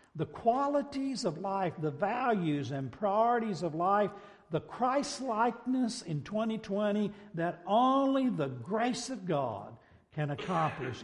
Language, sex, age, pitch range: English, male, 60-79, 150-210 Hz